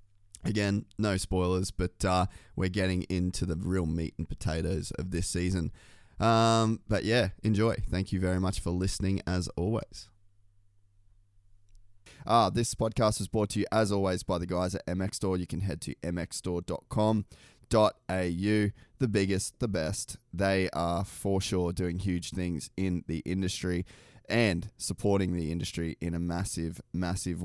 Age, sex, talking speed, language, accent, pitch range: 20-39, male, 155 wpm, English, Australian, 90-105 Hz